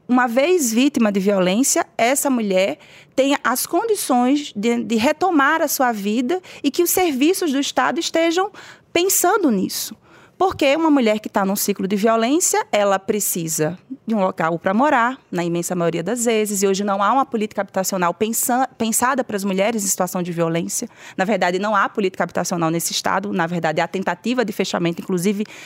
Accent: Brazilian